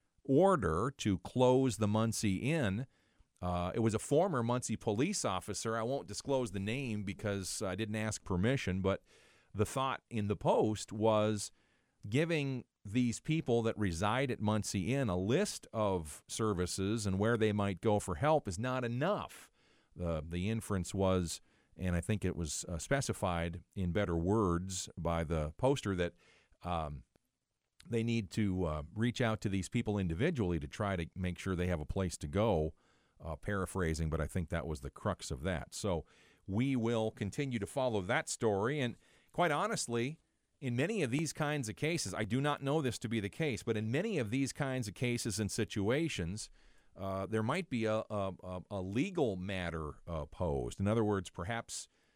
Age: 40-59